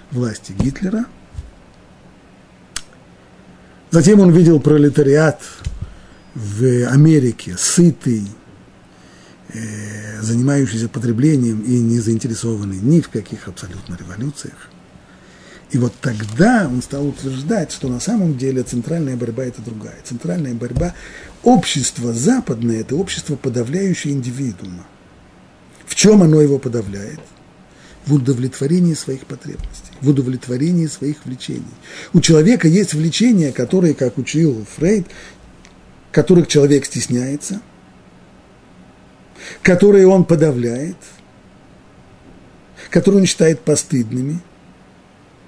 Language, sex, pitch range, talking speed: Russian, male, 120-165 Hz, 95 wpm